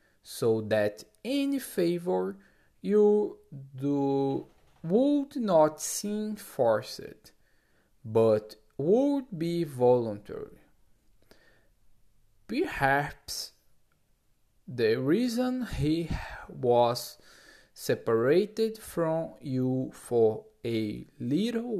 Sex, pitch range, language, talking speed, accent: male, 110-160 Hz, Portuguese, 70 wpm, Brazilian